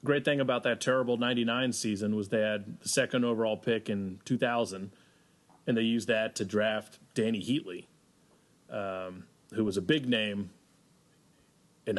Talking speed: 155 wpm